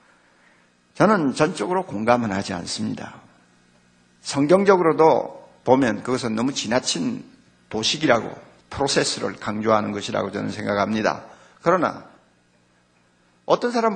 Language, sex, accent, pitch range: Korean, male, native, 155-225 Hz